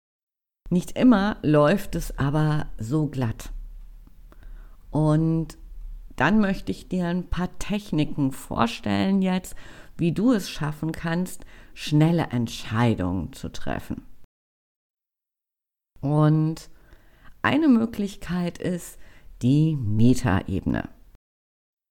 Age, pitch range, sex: 50-69, 130-180 Hz, female